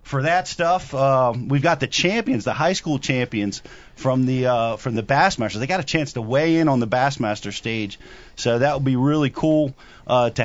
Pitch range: 125-150 Hz